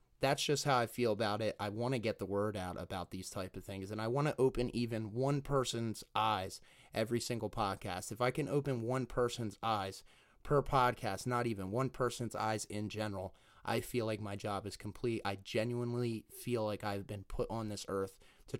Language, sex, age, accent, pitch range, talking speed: English, male, 30-49, American, 105-125 Hz, 210 wpm